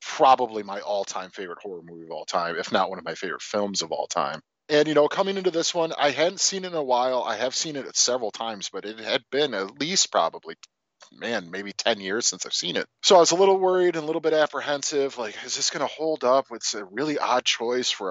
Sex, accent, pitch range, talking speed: male, American, 110-150 Hz, 260 wpm